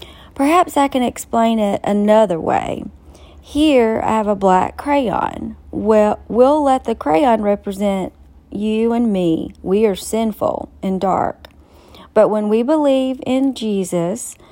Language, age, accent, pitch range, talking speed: English, 40-59, American, 200-255 Hz, 135 wpm